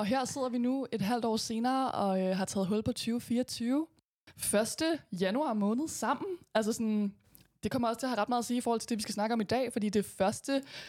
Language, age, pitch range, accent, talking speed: Danish, 20-39, 195-235 Hz, native, 255 wpm